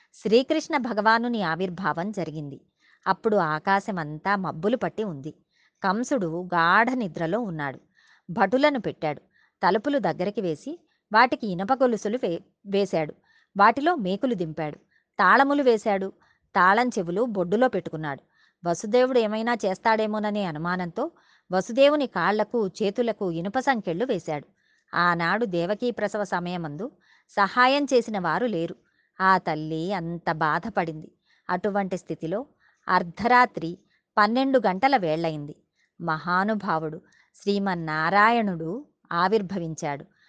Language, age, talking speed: Telugu, 30-49, 90 wpm